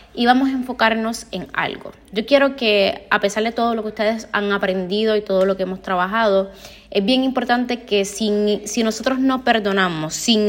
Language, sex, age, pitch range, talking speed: Spanish, female, 20-39, 185-230 Hz, 190 wpm